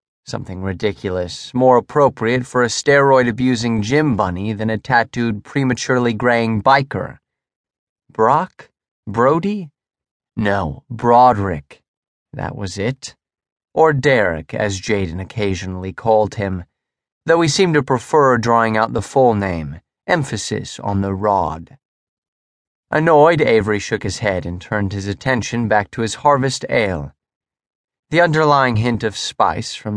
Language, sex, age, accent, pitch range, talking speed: English, male, 30-49, American, 100-135 Hz, 125 wpm